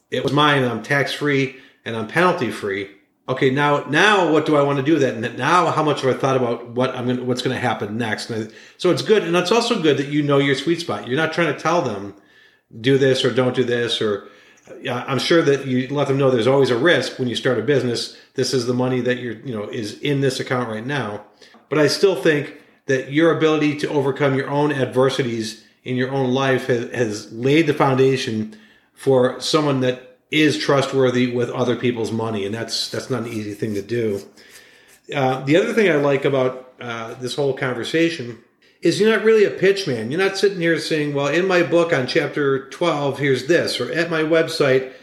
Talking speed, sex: 230 wpm, male